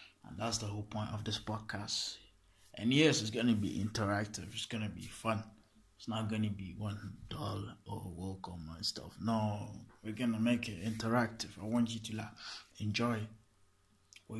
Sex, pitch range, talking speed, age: male, 100-115 Hz, 190 wpm, 20-39